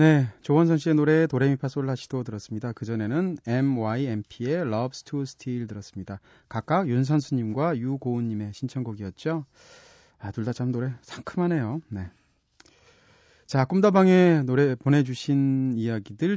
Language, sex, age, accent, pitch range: Korean, male, 30-49, native, 110-155 Hz